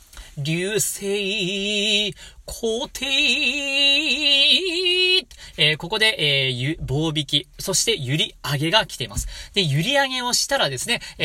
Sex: male